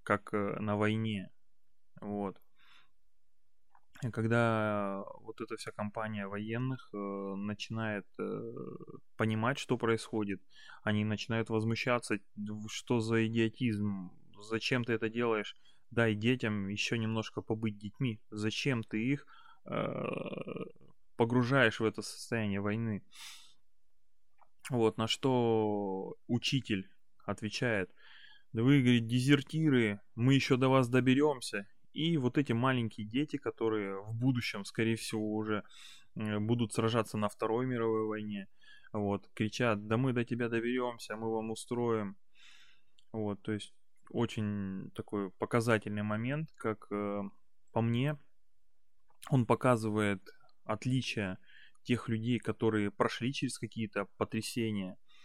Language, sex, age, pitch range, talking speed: Russian, male, 20-39, 105-120 Hz, 110 wpm